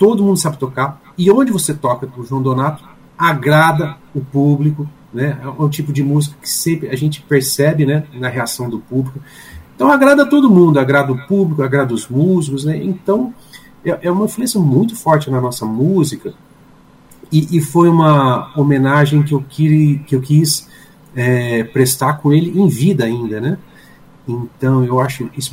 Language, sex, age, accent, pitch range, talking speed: Portuguese, male, 40-59, Brazilian, 120-150 Hz, 165 wpm